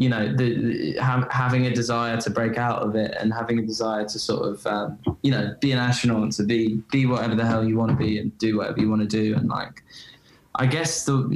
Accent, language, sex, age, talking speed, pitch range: British, Dutch, male, 10-29, 240 wpm, 105-120 Hz